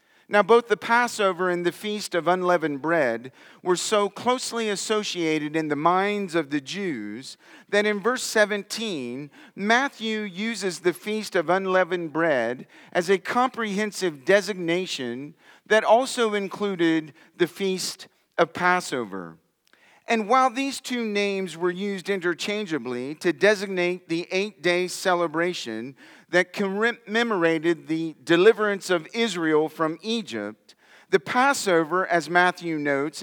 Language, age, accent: English, 40-59, American